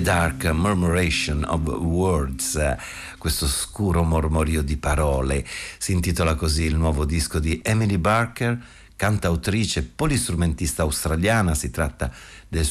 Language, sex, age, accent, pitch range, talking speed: Italian, male, 50-69, native, 75-95 Hz, 115 wpm